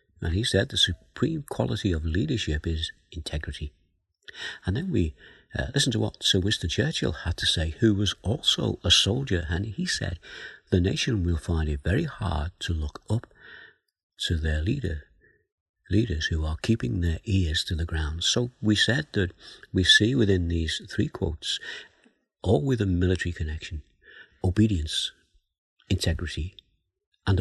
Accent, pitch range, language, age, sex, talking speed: British, 80-105 Hz, English, 50-69, male, 155 wpm